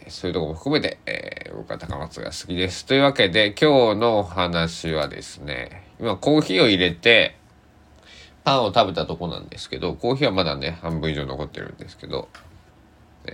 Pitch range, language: 80-125 Hz, Japanese